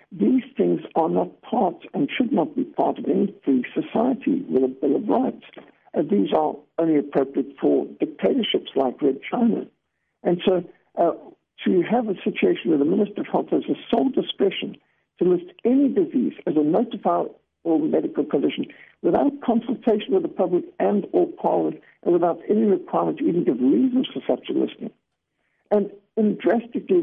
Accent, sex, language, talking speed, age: American, male, English, 175 wpm, 60-79